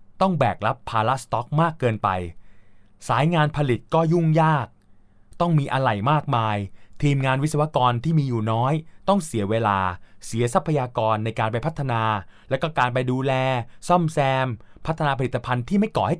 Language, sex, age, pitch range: Thai, male, 20-39, 105-150 Hz